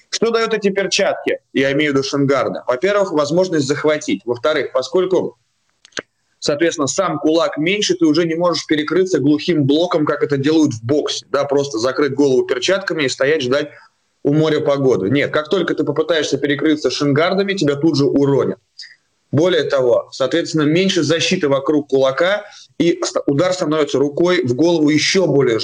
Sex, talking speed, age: male, 155 wpm, 20-39